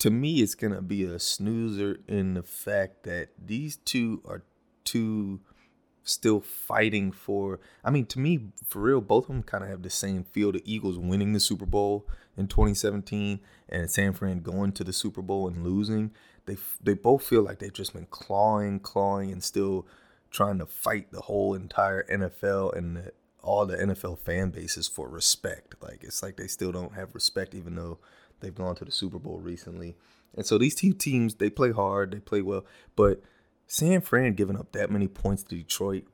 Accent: American